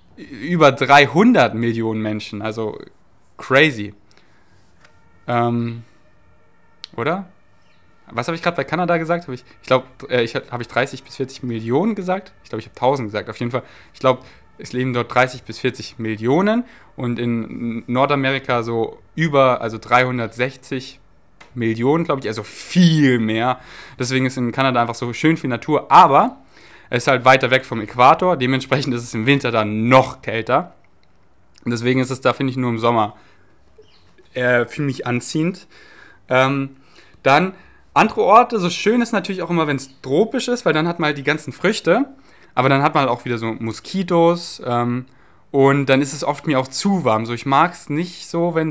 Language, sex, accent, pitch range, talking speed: German, male, German, 120-155 Hz, 180 wpm